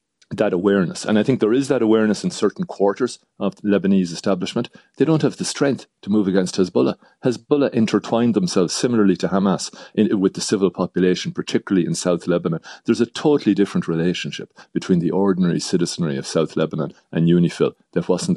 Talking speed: 185 wpm